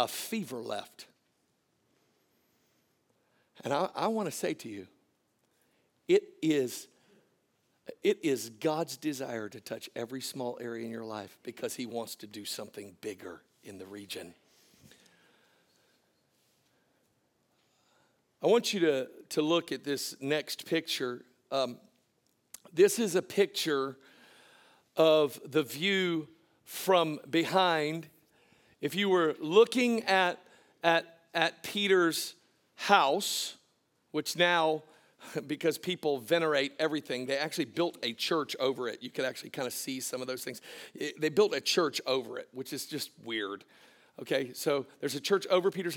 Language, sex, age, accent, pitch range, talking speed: English, male, 50-69, American, 145-195 Hz, 135 wpm